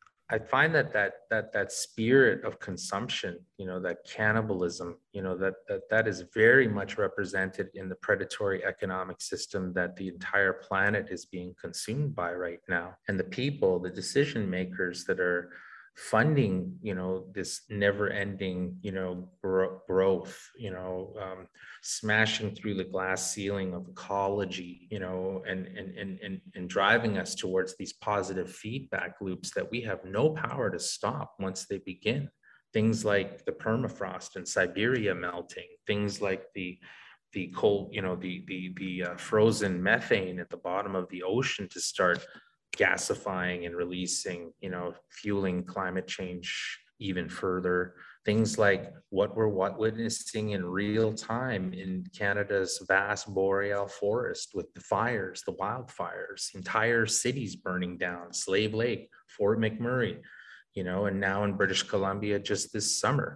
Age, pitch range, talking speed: 20-39, 90-105 Hz, 155 wpm